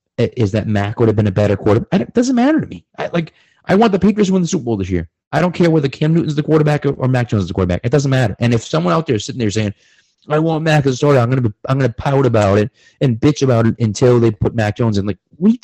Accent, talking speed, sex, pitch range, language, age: American, 310 wpm, male, 100-145 Hz, English, 30-49